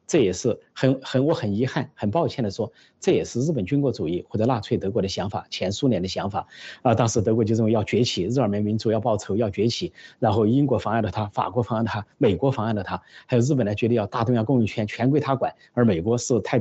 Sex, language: male, Chinese